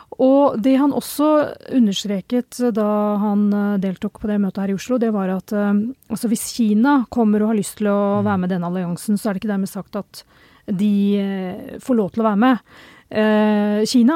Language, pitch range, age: English, 200-230 Hz, 40-59